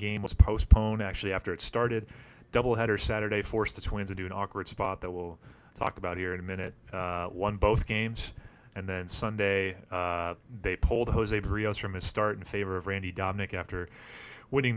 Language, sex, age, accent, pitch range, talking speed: English, male, 30-49, American, 95-115 Hz, 185 wpm